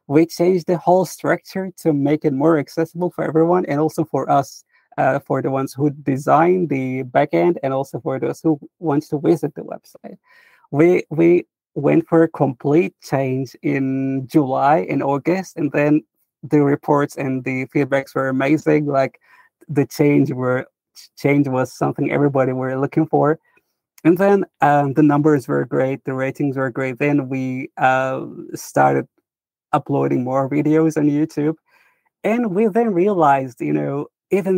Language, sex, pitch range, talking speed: English, male, 135-170 Hz, 160 wpm